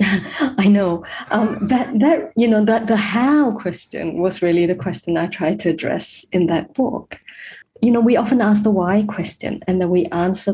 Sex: female